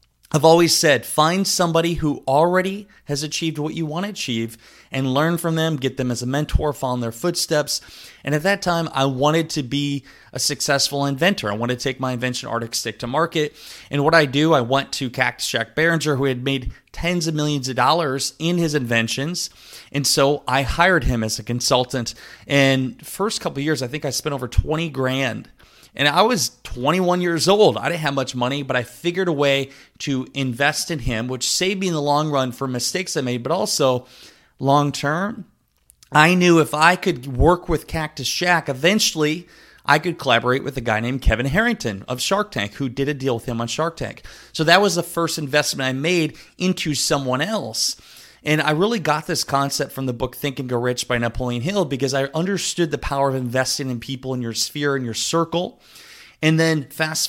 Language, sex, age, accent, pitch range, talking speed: English, male, 20-39, American, 125-160 Hz, 210 wpm